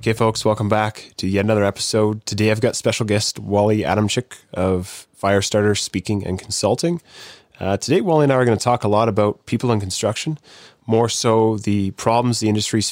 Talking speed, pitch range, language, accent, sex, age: 195 wpm, 100-115 Hz, English, American, male, 20-39